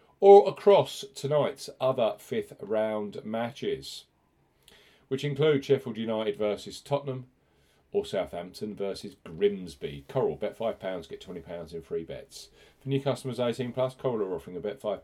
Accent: British